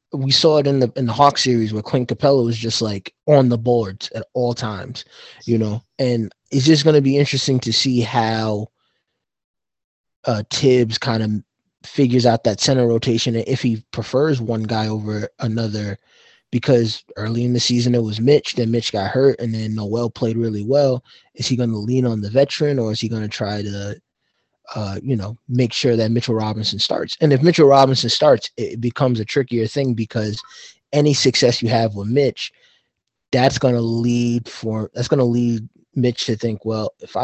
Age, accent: 20-39, American